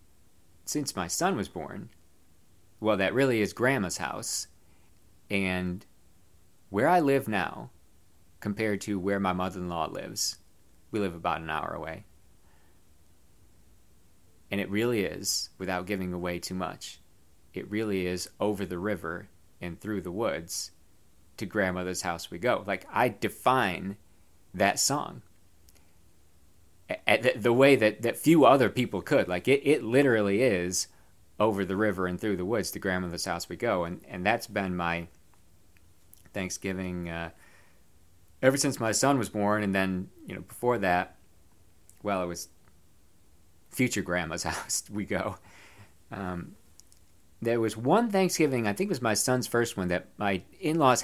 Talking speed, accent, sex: 150 wpm, American, male